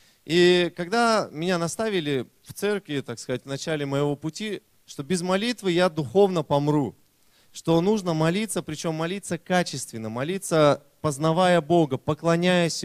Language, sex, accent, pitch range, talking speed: Russian, male, native, 125-175 Hz, 130 wpm